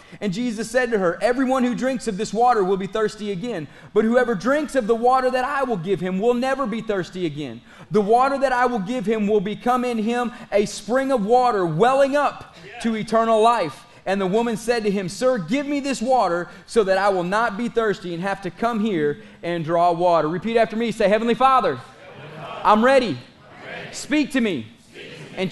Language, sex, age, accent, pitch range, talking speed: English, male, 30-49, American, 215-250 Hz, 210 wpm